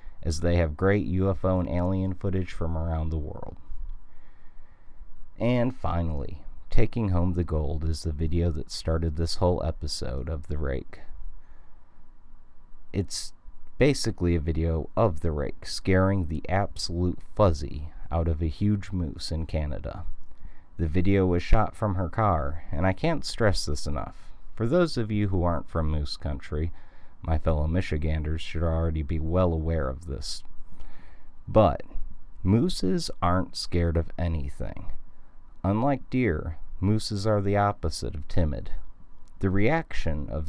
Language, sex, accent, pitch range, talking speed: English, male, American, 80-95 Hz, 140 wpm